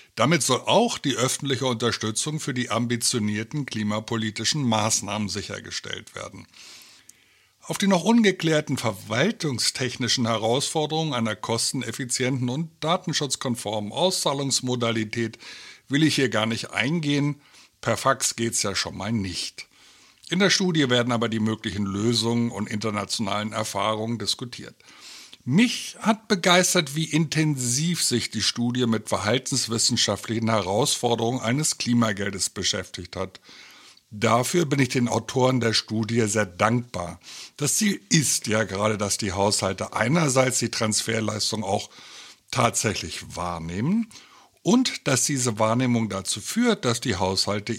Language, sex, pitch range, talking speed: German, male, 110-140 Hz, 120 wpm